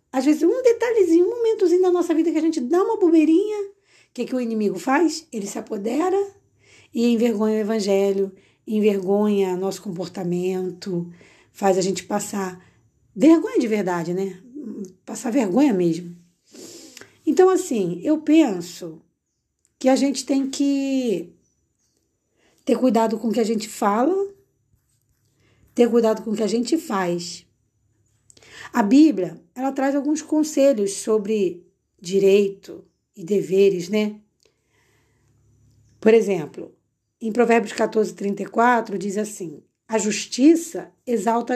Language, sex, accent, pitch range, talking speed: Portuguese, female, Brazilian, 195-305 Hz, 130 wpm